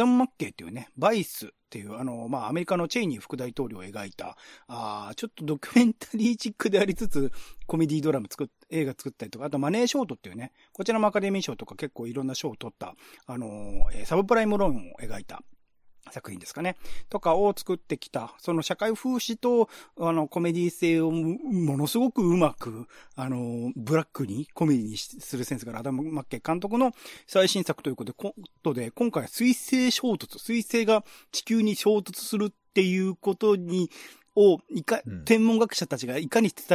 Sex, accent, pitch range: male, native, 135-205 Hz